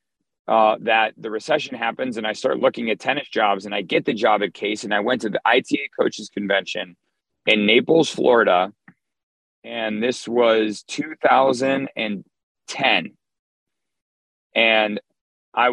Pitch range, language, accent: 100-130 Hz, English, American